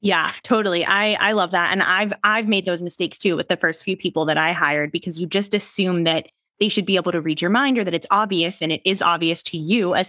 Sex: female